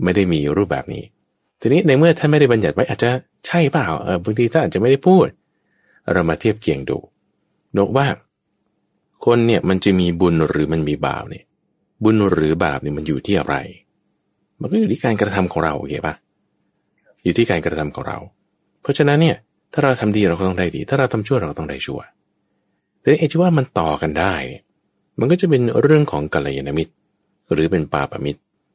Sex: male